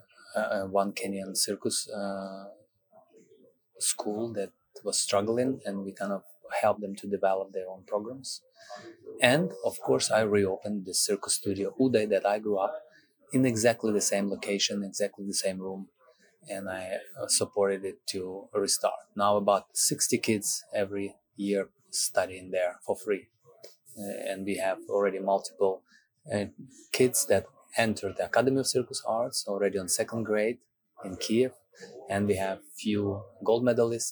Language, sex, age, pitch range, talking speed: English, male, 20-39, 100-120 Hz, 155 wpm